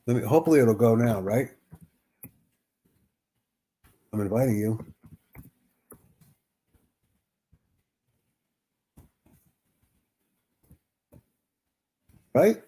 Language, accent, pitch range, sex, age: English, American, 110-120 Hz, male, 60-79